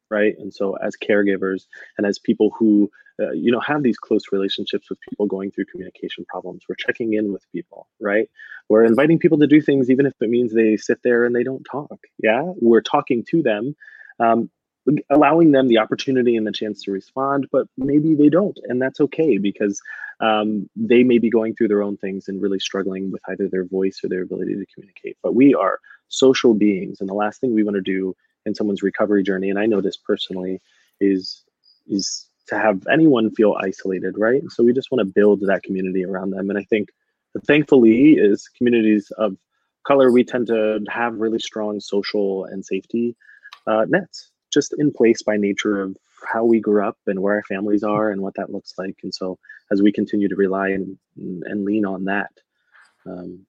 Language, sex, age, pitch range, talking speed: English, male, 20-39, 95-120 Hz, 205 wpm